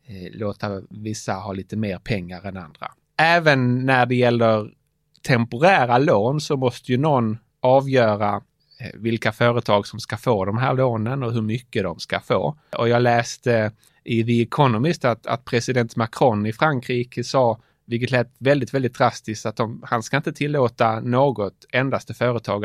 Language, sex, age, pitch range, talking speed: Swedish, male, 30-49, 110-130 Hz, 160 wpm